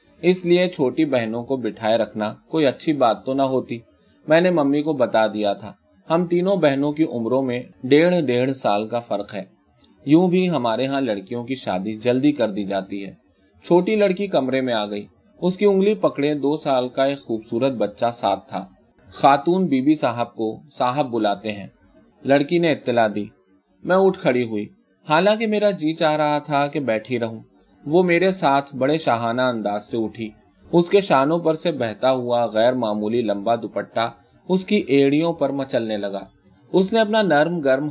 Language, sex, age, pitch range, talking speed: Urdu, male, 30-49, 110-155 Hz, 175 wpm